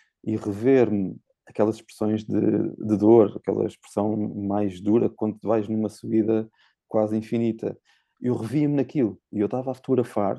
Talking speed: 145 wpm